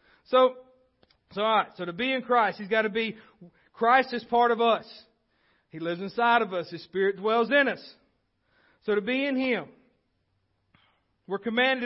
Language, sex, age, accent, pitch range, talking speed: English, male, 40-59, American, 165-230 Hz, 165 wpm